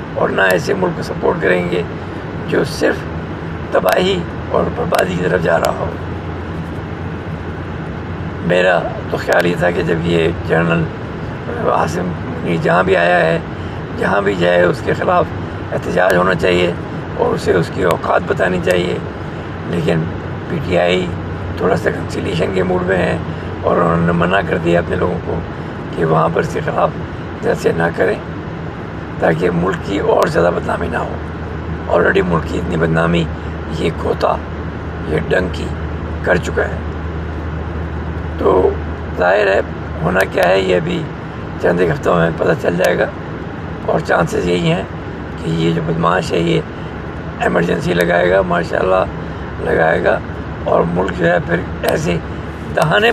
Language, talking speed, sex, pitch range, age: English, 125 wpm, male, 80-90 Hz, 60-79